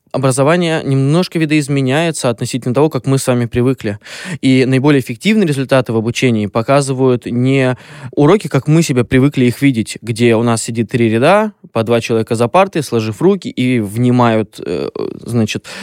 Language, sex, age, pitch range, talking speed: Russian, male, 20-39, 115-140 Hz, 155 wpm